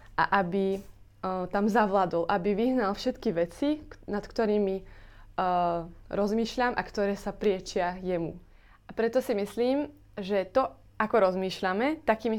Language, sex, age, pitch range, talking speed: Slovak, female, 20-39, 185-220 Hz, 135 wpm